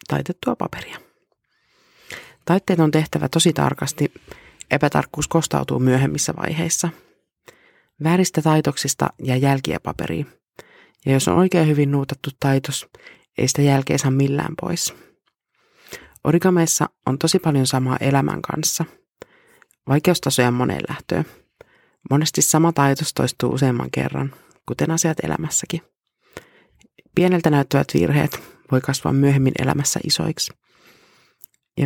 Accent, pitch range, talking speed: native, 135-165 Hz, 105 wpm